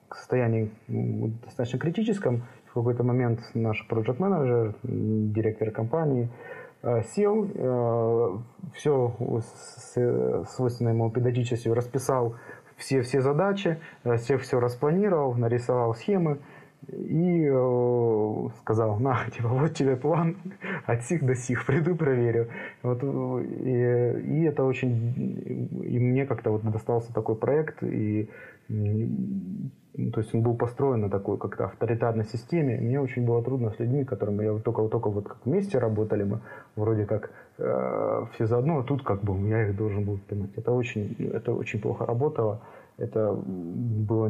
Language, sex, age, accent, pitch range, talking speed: Russian, male, 30-49, native, 110-135 Hz, 125 wpm